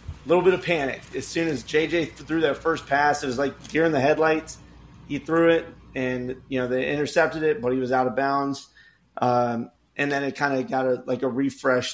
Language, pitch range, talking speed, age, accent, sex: English, 125-140 Hz, 225 wpm, 30-49, American, male